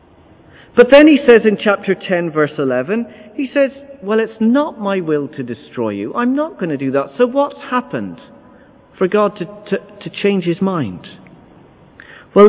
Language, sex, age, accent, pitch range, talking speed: English, male, 50-69, British, 155-220 Hz, 175 wpm